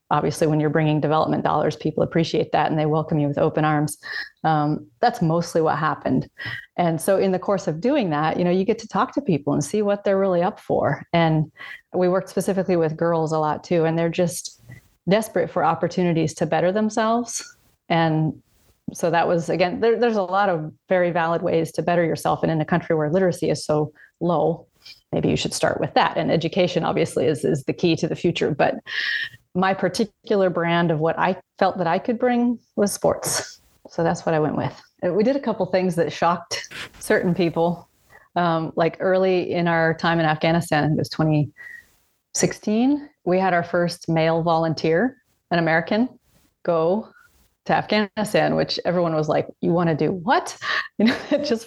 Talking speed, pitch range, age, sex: 195 wpm, 165-200 Hz, 30-49, female